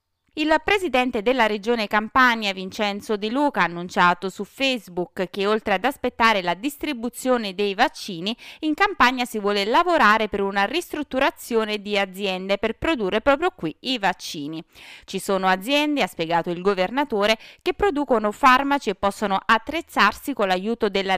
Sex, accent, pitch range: female, native, 195-260 Hz